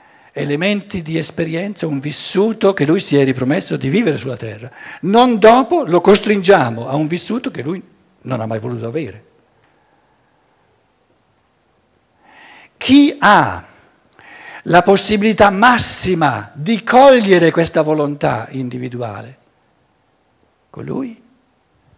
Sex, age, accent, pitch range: male, 60-79, native, 155-230 Hz